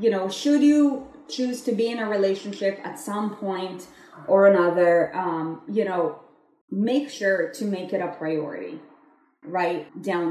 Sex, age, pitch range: female, 20-39, 185-235 Hz